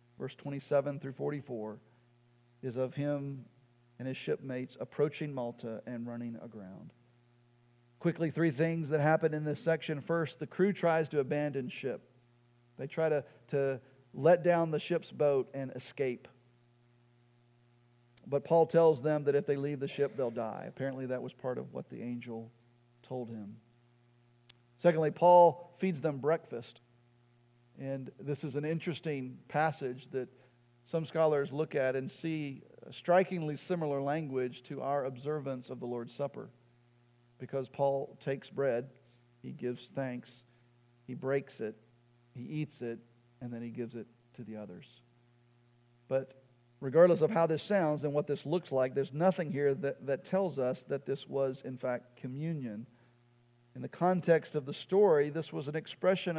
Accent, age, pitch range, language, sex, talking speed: American, 40-59, 120-150 Hz, English, male, 155 wpm